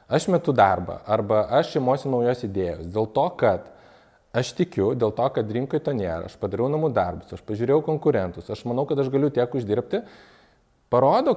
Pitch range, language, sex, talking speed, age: 110-155 Hz, English, male, 175 wpm, 20-39